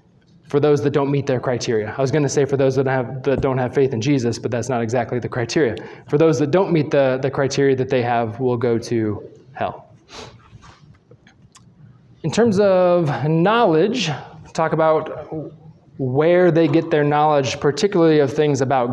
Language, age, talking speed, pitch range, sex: English, 20-39, 180 wpm, 130-150 Hz, male